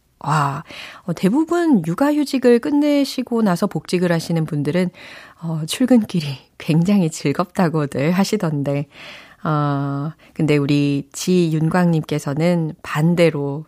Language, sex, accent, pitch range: Korean, female, native, 150-235 Hz